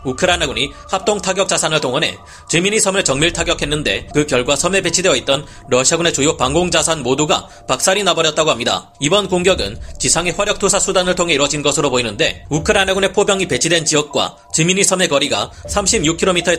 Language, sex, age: Korean, male, 30-49